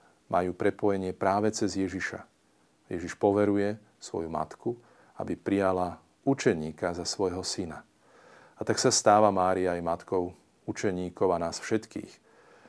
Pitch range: 90-105 Hz